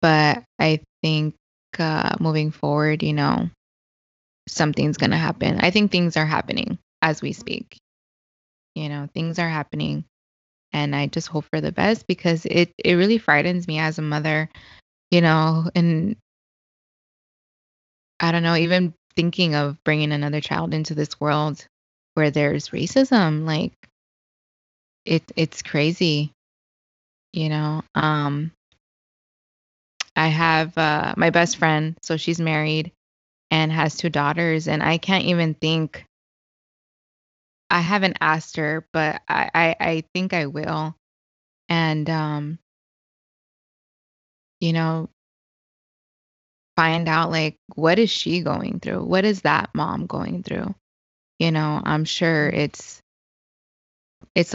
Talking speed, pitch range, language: 130 wpm, 150-165 Hz, English